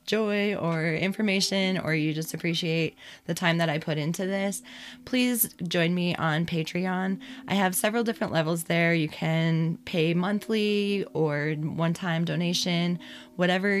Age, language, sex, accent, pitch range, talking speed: 20-39, English, female, American, 160-195 Hz, 145 wpm